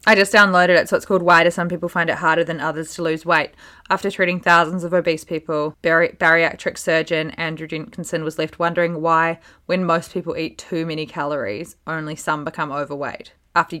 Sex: female